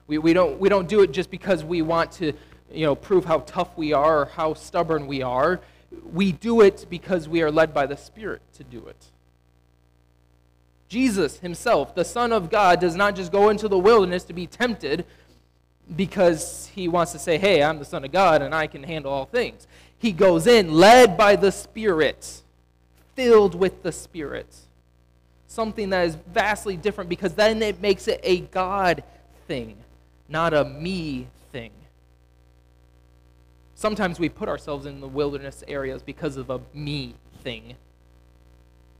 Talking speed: 170 wpm